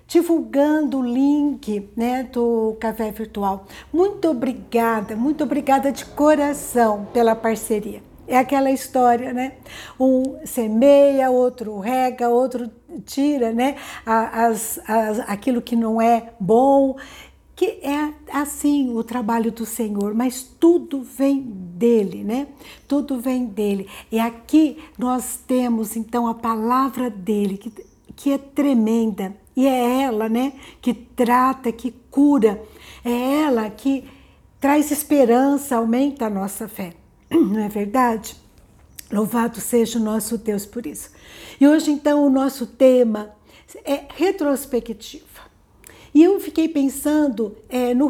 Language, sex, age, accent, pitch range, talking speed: Portuguese, female, 60-79, Brazilian, 230-280 Hz, 125 wpm